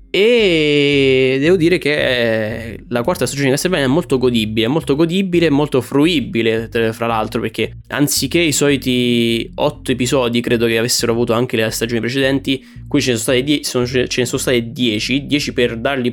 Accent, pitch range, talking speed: native, 115-135 Hz, 170 wpm